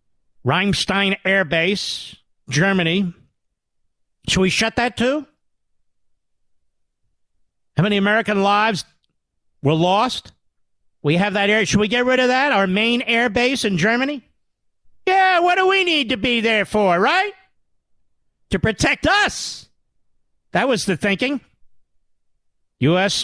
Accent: American